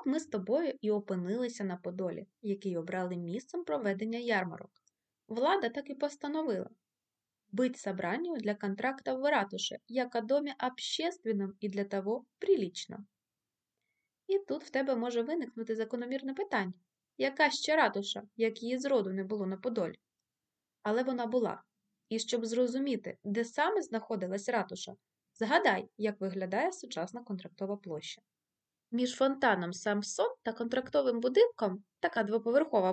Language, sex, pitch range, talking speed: Ukrainian, female, 205-270 Hz, 130 wpm